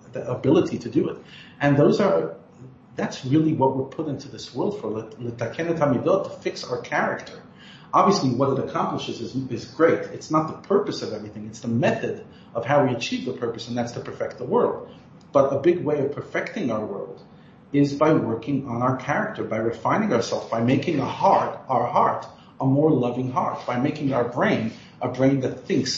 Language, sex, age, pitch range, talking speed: English, male, 40-59, 120-150 Hz, 190 wpm